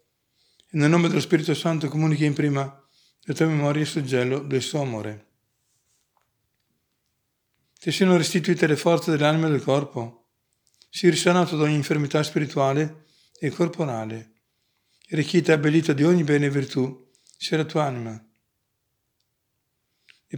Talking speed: 145 wpm